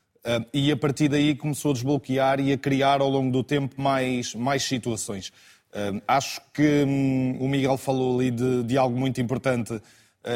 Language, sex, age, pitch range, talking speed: Portuguese, male, 20-39, 125-140 Hz, 185 wpm